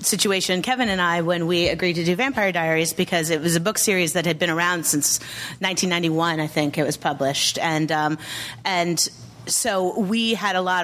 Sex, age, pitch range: female, 30-49, 170-210 Hz